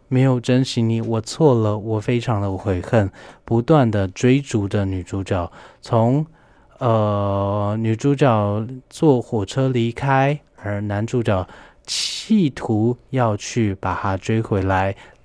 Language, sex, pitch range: Chinese, male, 100-135 Hz